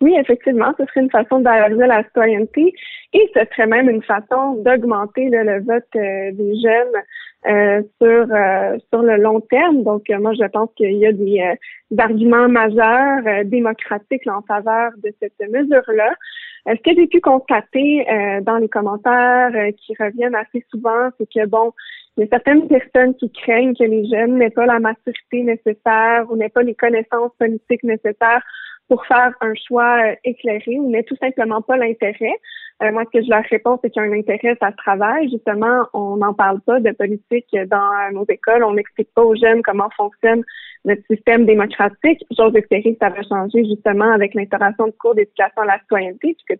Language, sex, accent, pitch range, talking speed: French, female, Canadian, 215-250 Hz, 195 wpm